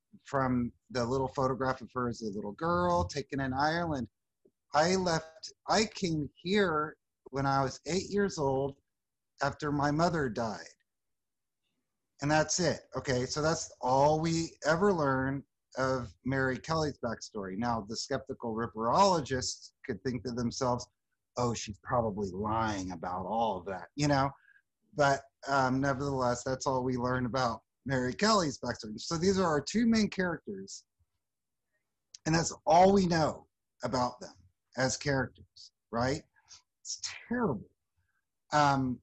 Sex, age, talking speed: male, 30-49, 140 wpm